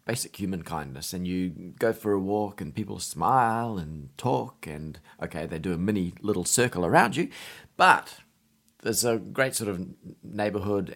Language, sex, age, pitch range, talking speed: English, male, 30-49, 90-115 Hz, 170 wpm